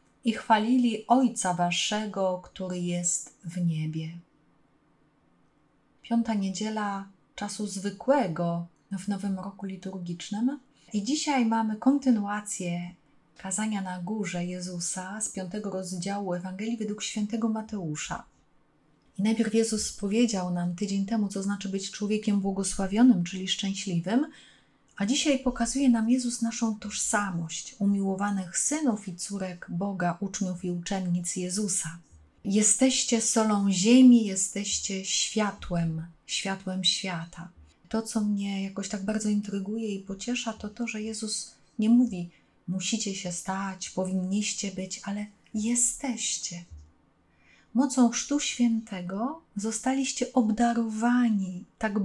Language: Polish